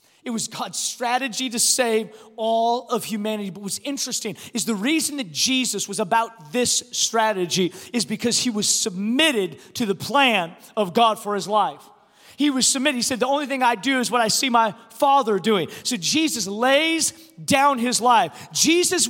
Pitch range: 225-280 Hz